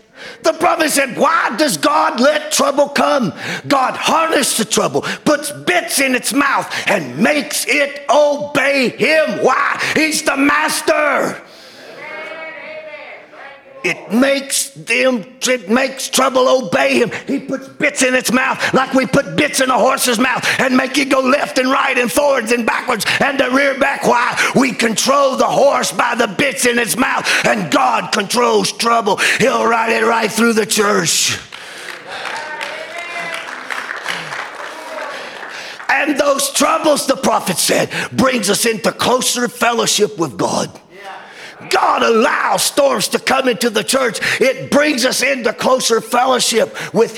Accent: American